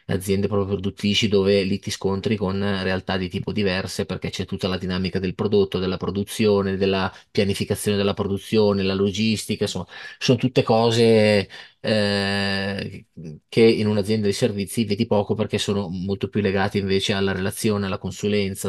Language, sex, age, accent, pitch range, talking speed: Italian, male, 20-39, native, 95-105 Hz, 155 wpm